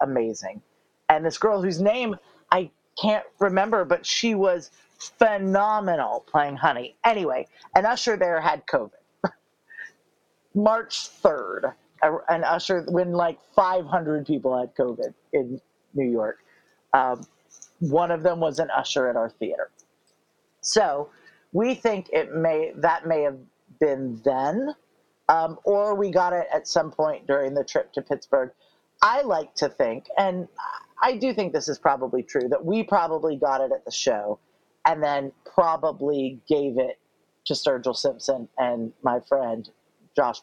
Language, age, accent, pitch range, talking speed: English, 40-59, American, 140-185 Hz, 145 wpm